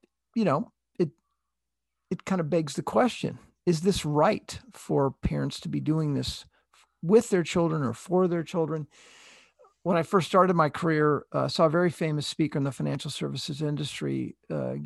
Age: 50-69